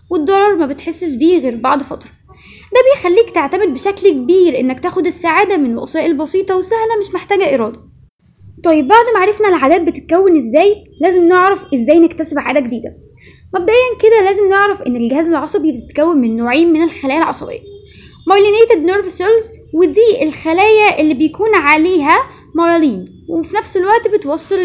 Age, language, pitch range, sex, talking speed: 20-39, Arabic, 290-390 Hz, female, 150 wpm